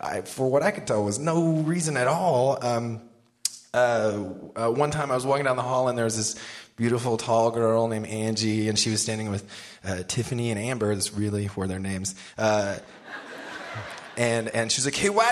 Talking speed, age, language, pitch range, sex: 210 wpm, 20-39, English, 105-175 Hz, male